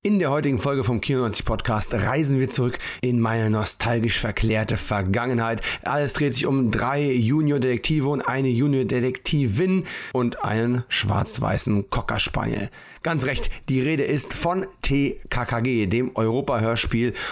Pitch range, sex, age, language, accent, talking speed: 110-140 Hz, male, 40-59, German, German, 130 wpm